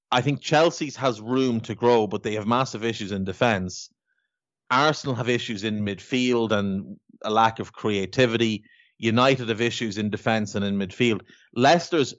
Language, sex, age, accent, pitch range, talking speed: English, male, 30-49, Irish, 105-130 Hz, 160 wpm